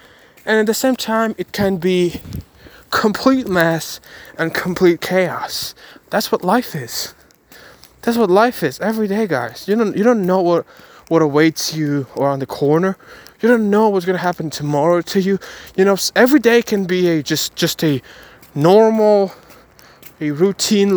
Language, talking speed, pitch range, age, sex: English, 170 wpm, 160-215 Hz, 20-39, male